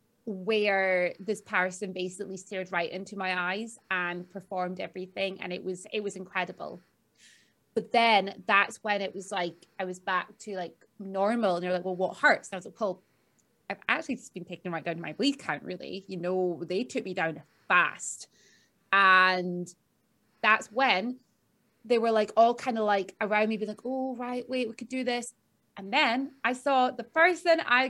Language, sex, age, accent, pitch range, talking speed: English, female, 20-39, British, 190-250 Hz, 185 wpm